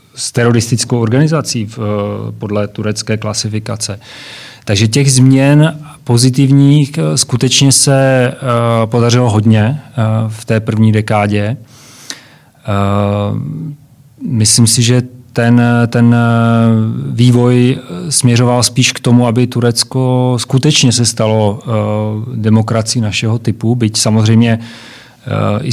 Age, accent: 30-49, native